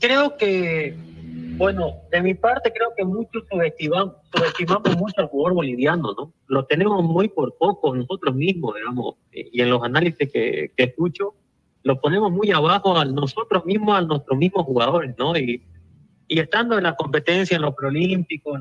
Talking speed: 170 wpm